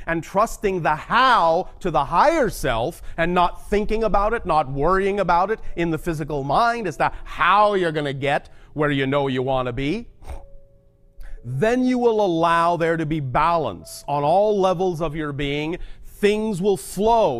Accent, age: American, 40-59